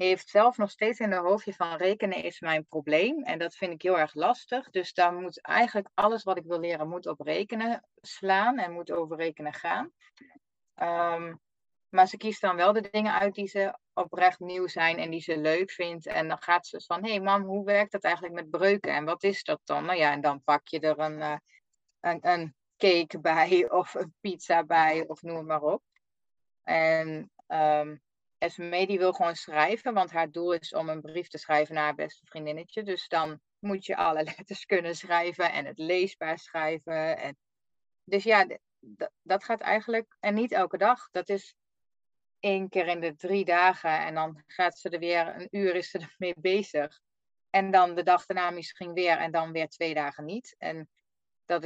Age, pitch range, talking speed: 30-49, 160-195 Hz, 200 wpm